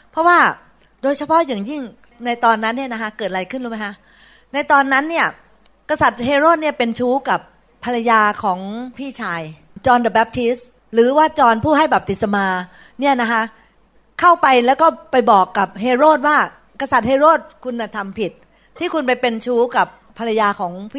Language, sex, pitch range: Thai, female, 210-290 Hz